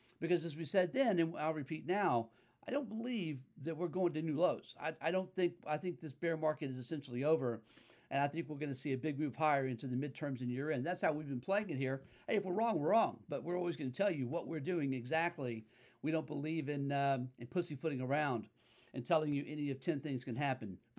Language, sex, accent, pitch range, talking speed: English, male, American, 125-170 Hz, 255 wpm